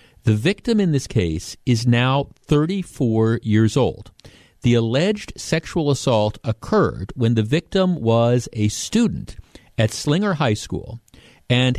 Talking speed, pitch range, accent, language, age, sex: 130 wpm, 110-150 Hz, American, English, 50-69, male